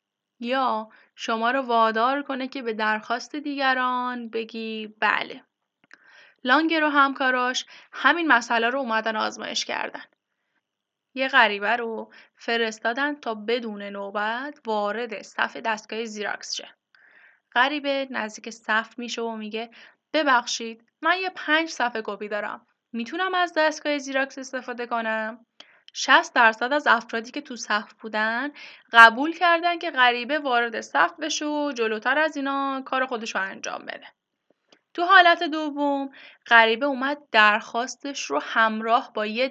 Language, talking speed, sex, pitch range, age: Persian, 130 wpm, female, 225-285 Hz, 10-29